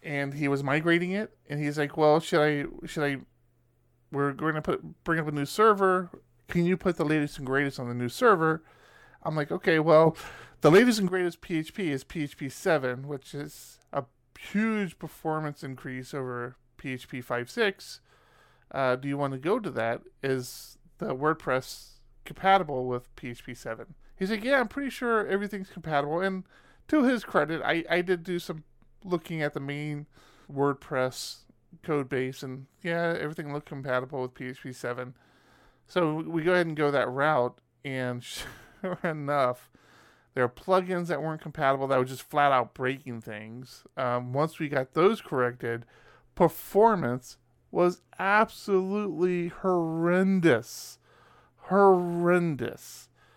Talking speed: 155 wpm